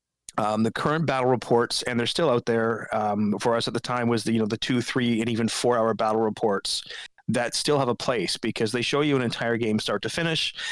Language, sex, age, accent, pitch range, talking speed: English, male, 30-49, American, 115-135 Hz, 240 wpm